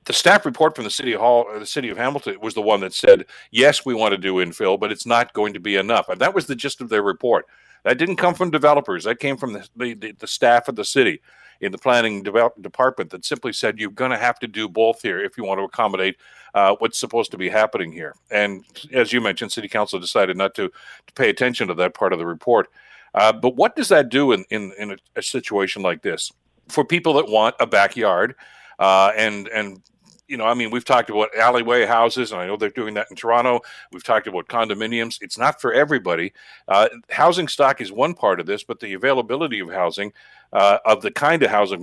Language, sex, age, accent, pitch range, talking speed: English, male, 50-69, American, 100-125 Hz, 235 wpm